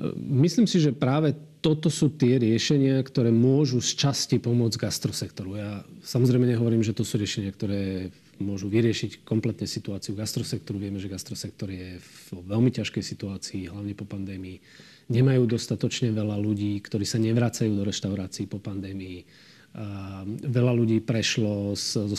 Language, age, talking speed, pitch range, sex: Slovak, 40-59, 140 wpm, 100-125 Hz, male